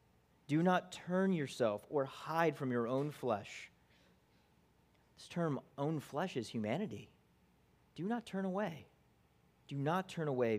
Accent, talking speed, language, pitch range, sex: American, 135 wpm, English, 110-145 Hz, male